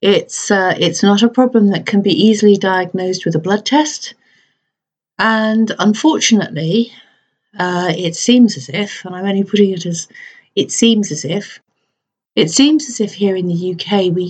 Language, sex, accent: English, female, British